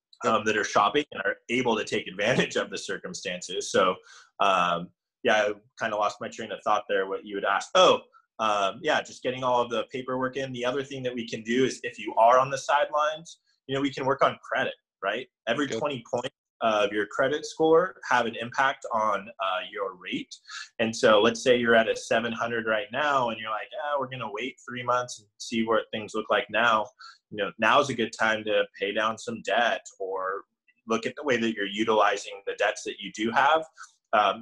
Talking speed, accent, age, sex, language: 220 wpm, American, 20-39, male, English